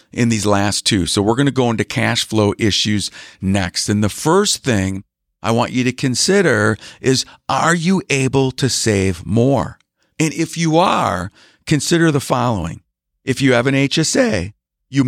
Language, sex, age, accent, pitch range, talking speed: English, male, 50-69, American, 105-135 Hz, 170 wpm